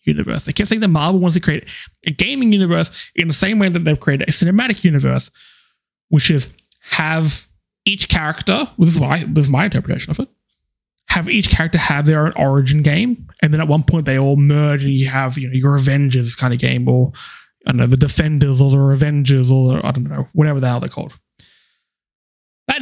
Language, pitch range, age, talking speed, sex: English, 135-180 Hz, 20-39, 215 wpm, male